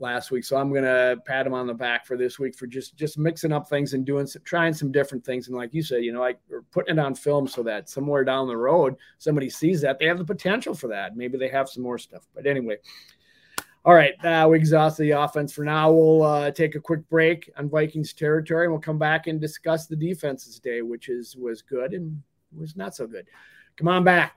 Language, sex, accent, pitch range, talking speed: English, male, American, 135-165 Hz, 250 wpm